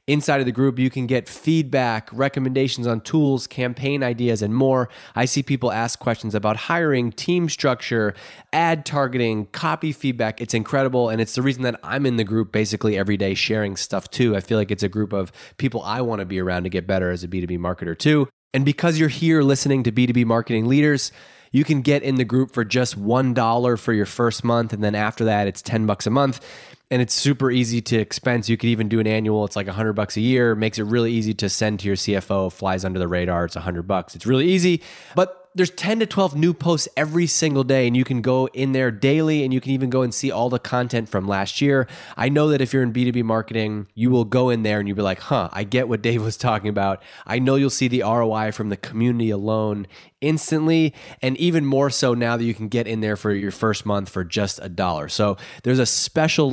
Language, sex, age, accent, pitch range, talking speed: English, male, 20-39, American, 105-135 Hz, 240 wpm